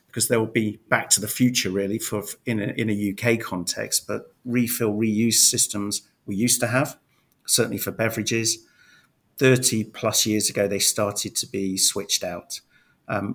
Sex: male